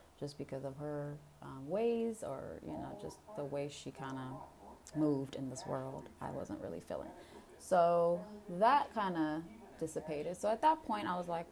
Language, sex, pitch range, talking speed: Amharic, female, 130-175 Hz, 180 wpm